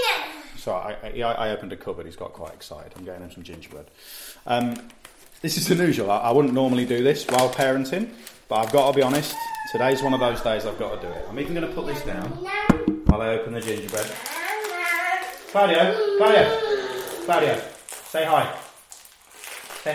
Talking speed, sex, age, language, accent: 185 wpm, male, 30-49, English, British